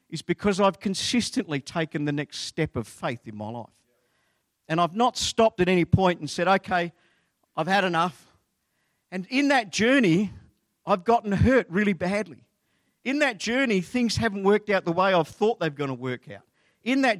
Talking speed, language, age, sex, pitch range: 190 wpm, English, 50-69, male, 155-220 Hz